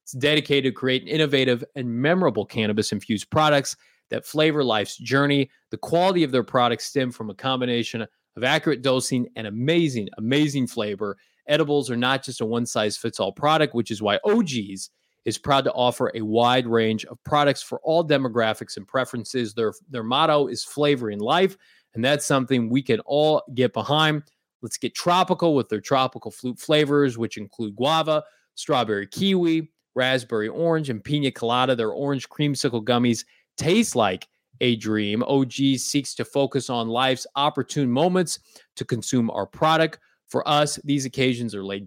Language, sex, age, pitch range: English, male, 30-49, 115-145 Hz